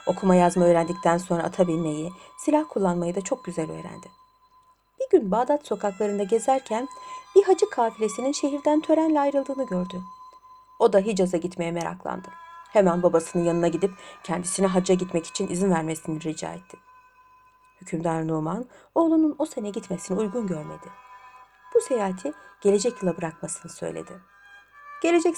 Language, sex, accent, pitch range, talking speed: Turkish, female, native, 185-300 Hz, 130 wpm